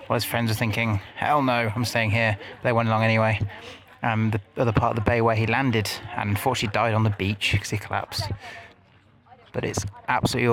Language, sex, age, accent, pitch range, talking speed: English, male, 30-49, British, 100-120 Hz, 210 wpm